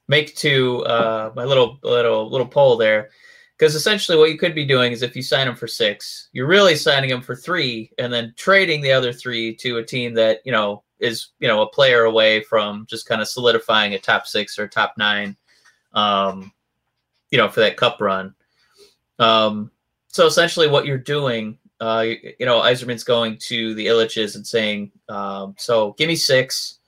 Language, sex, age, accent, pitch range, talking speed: English, male, 30-49, American, 110-150 Hz, 195 wpm